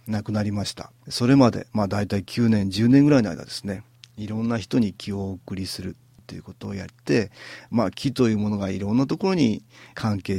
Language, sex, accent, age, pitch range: Japanese, male, native, 40-59, 100-125 Hz